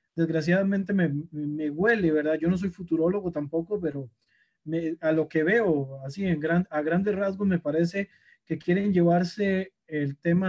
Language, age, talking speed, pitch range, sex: Spanish, 30-49, 165 wpm, 155-190 Hz, male